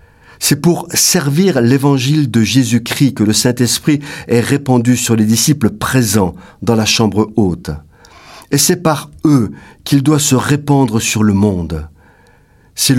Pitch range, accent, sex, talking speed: 105-145 Hz, French, male, 145 wpm